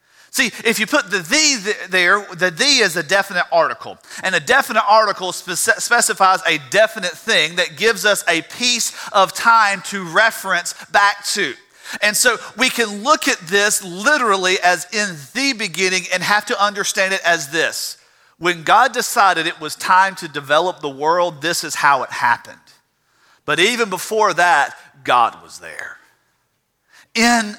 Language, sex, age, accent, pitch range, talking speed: English, male, 40-59, American, 175-230 Hz, 160 wpm